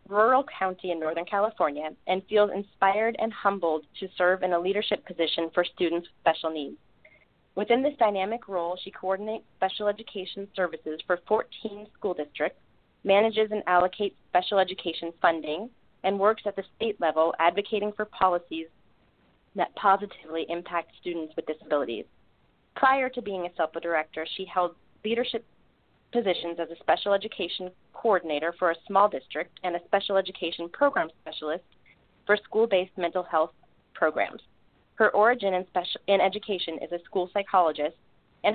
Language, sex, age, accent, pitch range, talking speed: English, female, 30-49, American, 170-205 Hz, 150 wpm